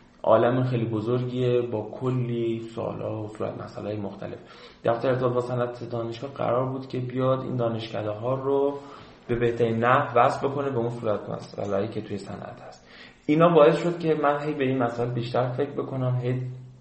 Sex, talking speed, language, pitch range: male, 180 wpm, Persian, 105-130 Hz